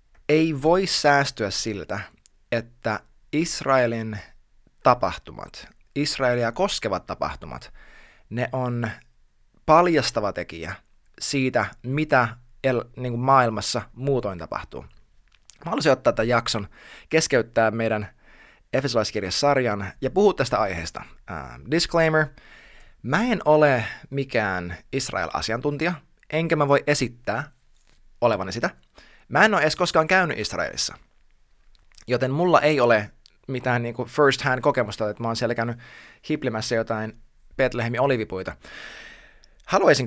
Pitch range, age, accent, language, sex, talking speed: 110-145 Hz, 20-39, native, Finnish, male, 105 wpm